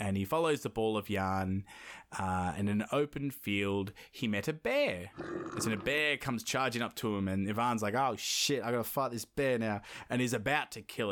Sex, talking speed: male, 220 wpm